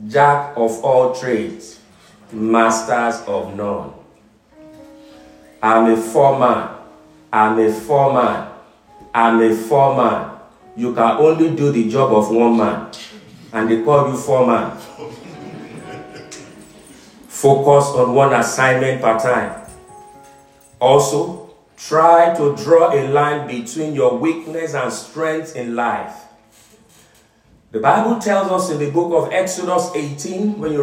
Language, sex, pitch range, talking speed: English, male, 120-175 Hz, 120 wpm